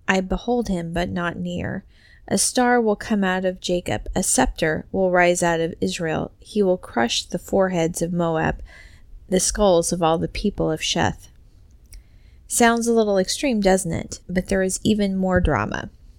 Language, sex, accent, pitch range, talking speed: English, female, American, 170-220 Hz, 175 wpm